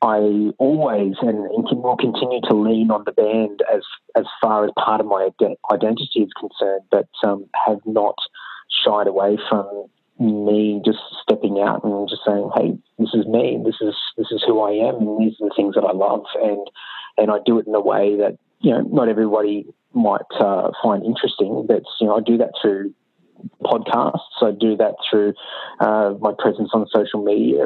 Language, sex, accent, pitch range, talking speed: English, male, Australian, 105-115 Hz, 190 wpm